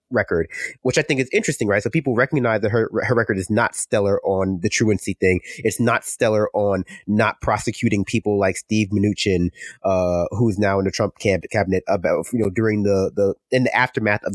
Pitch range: 100-130 Hz